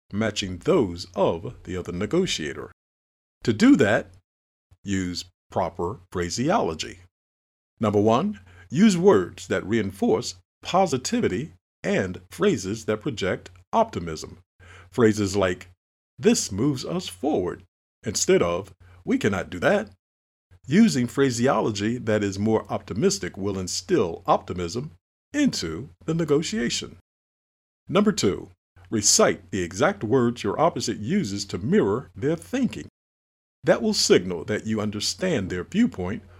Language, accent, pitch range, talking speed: English, American, 90-125 Hz, 115 wpm